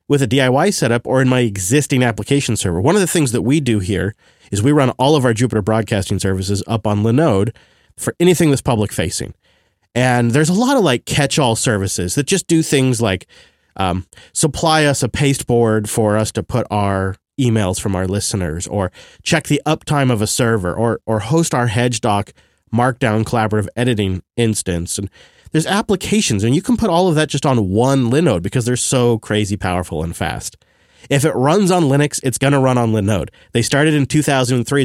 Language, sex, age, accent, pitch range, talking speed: English, male, 30-49, American, 105-140 Hz, 200 wpm